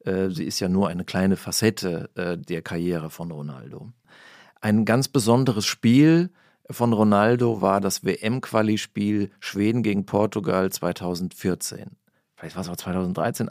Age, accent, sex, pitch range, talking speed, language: 40-59, German, male, 95-120 Hz, 130 wpm, German